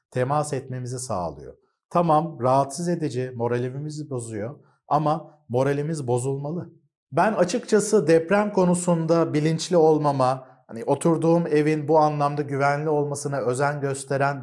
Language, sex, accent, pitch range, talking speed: Turkish, male, native, 125-155 Hz, 110 wpm